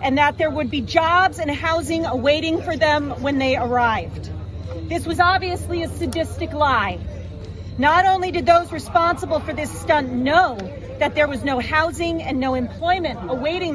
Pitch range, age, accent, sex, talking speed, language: 290-360 Hz, 40-59, American, female, 165 wpm, English